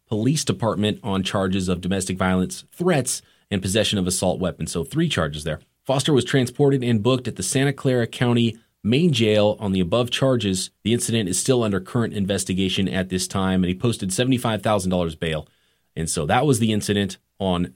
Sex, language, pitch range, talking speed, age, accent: male, English, 95-130 Hz, 185 wpm, 30-49, American